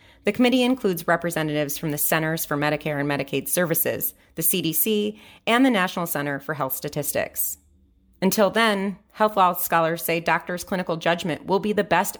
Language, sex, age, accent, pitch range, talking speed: English, female, 30-49, American, 150-185 Hz, 165 wpm